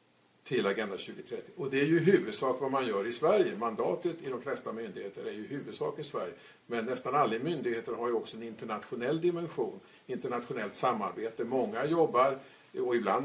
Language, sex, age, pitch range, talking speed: Swedish, male, 50-69, 115-160 Hz, 180 wpm